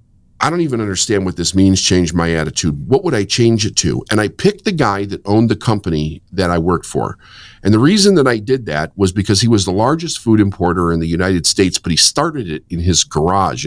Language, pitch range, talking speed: English, 85-110 Hz, 240 wpm